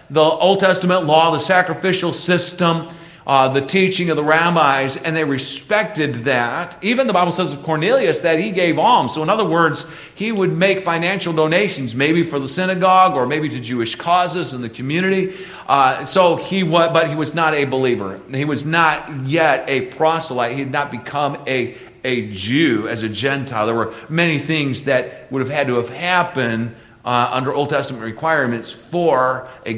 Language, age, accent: English, 40-59, American